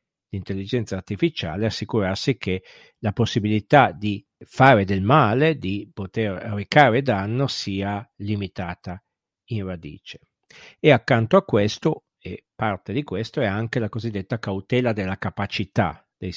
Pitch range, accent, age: 100-130 Hz, native, 50-69